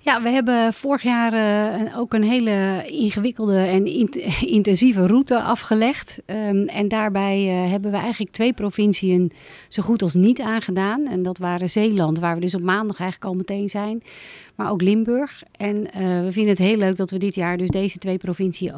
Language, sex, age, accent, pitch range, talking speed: Dutch, female, 40-59, Dutch, 180-215 Hz, 175 wpm